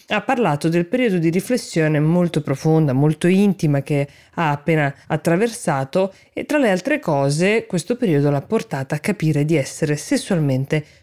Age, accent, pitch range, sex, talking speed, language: 20-39, native, 150-190 Hz, female, 150 wpm, Italian